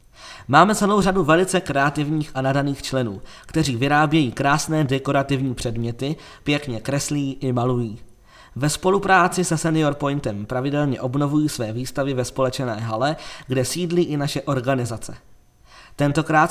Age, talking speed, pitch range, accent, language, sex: 20-39, 125 wpm, 125-150 Hz, native, Czech, male